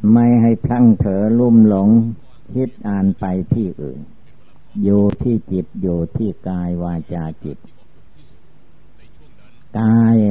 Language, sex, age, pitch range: Thai, male, 60-79, 90-110 Hz